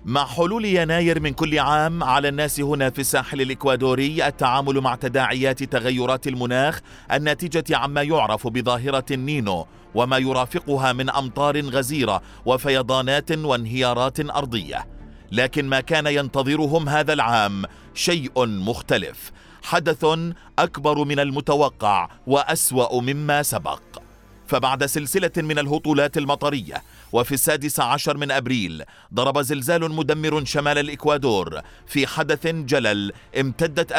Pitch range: 130-155 Hz